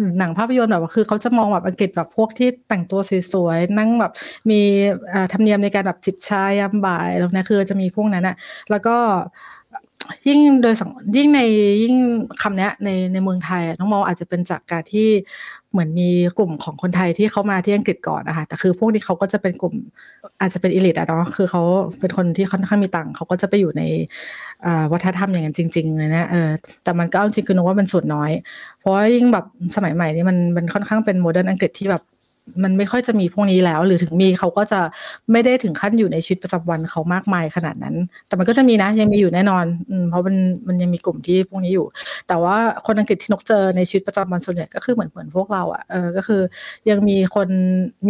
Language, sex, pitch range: Thai, female, 180-215 Hz